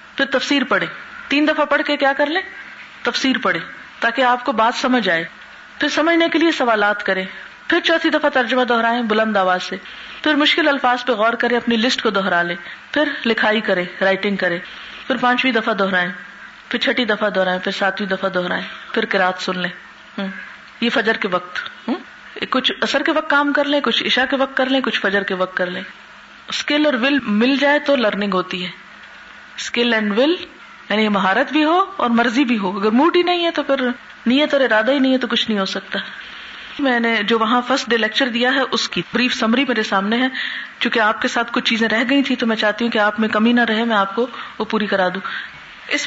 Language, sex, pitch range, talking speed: Urdu, female, 205-270 Hz, 215 wpm